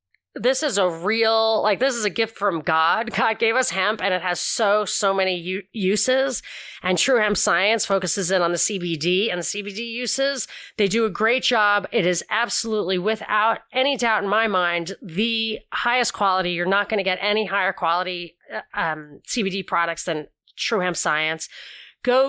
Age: 30-49